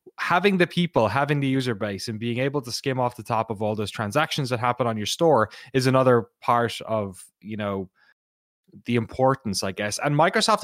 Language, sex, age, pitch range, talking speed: English, male, 20-39, 110-135 Hz, 205 wpm